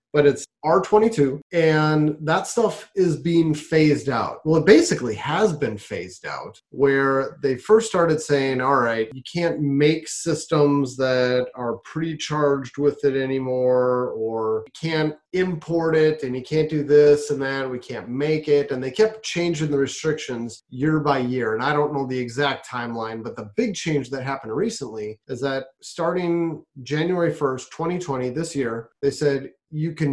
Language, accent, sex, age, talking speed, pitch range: English, American, male, 30-49, 170 wpm, 135-165 Hz